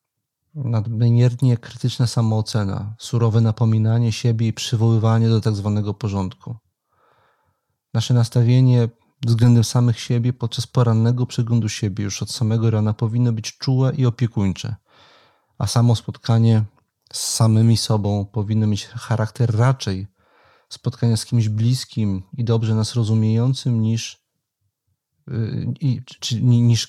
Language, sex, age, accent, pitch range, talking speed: Polish, male, 40-59, native, 110-125 Hz, 110 wpm